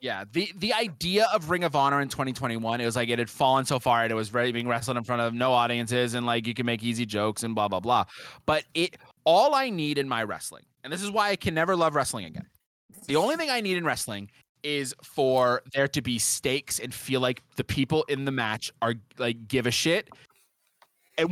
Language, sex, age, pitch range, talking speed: English, male, 20-39, 125-170 Hz, 240 wpm